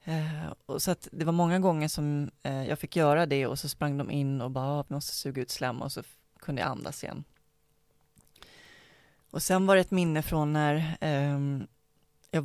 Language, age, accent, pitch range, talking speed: Swedish, 30-49, native, 145-170 Hz, 210 wpm